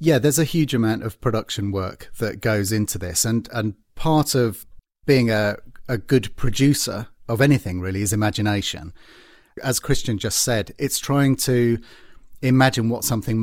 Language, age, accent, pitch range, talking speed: English, 40-59, British, 100-120 Hz, 160 wpm